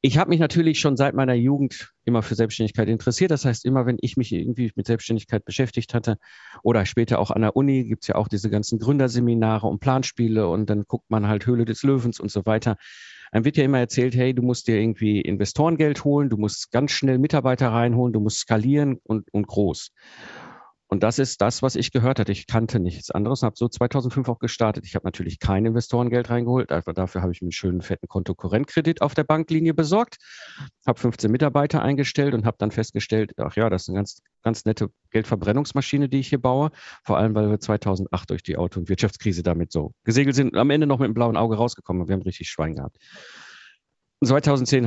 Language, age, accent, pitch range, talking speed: German, 50-69, German, 105-130 Hz, 215 wpm